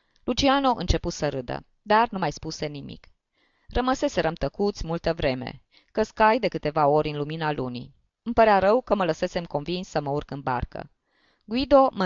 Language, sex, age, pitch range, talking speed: Romanian, female, 20-39, 155-210 Hz, 170 wpm